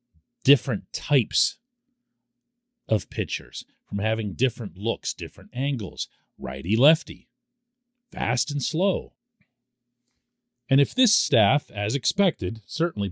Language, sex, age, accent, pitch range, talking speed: English, male, 40-59, American, 120-175 Hz, 100 wpm